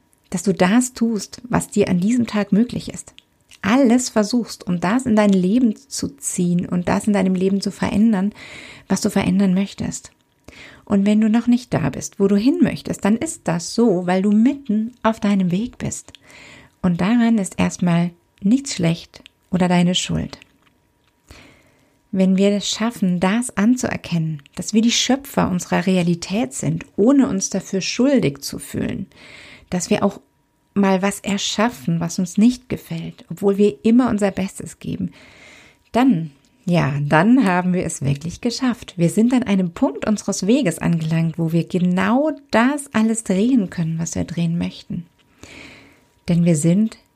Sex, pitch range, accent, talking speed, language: female, 175-225 Hz, German, 160 wpm, German